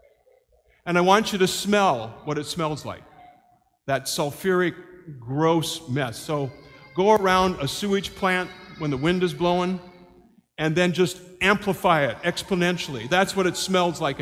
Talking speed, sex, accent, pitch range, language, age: 150 wpm, male, American, 165-210 Hz, English, 50-69